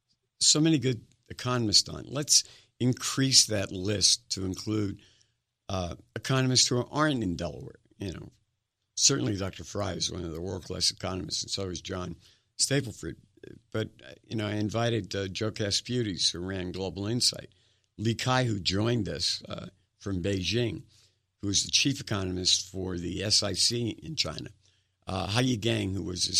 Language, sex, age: English, male, 50-69